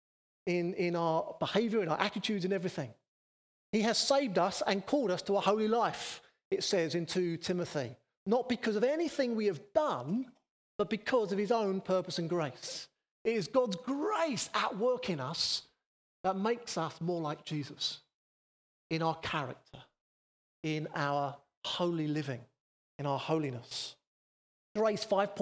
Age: 30-49